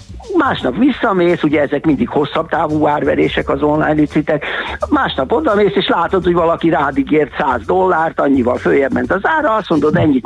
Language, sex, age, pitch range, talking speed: Hungarian, male, 60-79, 125-175 Hz, 170 wpm